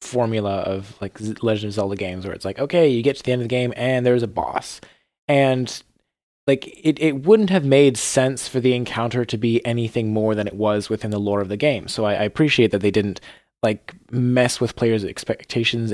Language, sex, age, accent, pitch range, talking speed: English, male, 20-39, American, 105-130 Hz, 220 wpm